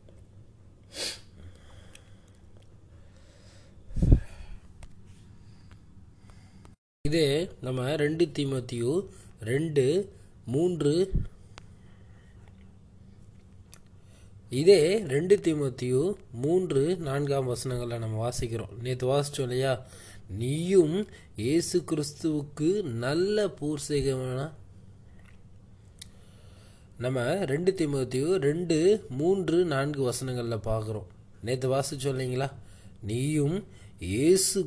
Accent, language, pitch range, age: native, Tamil, 100-150 Hz, 20-39